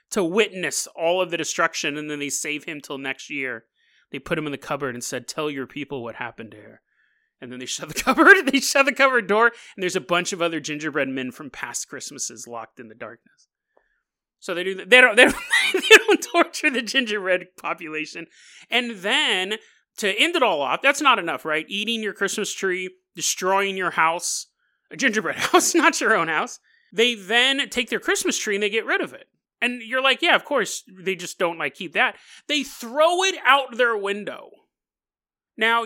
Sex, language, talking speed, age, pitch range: male, English, 205 wpm, 30-49, 180-270 Hz